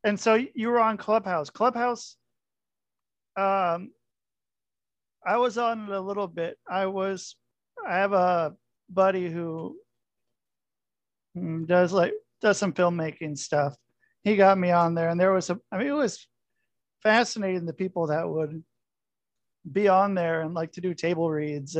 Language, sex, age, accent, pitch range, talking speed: English, male, 40-59, American, 160-195 Hz, 150 wpm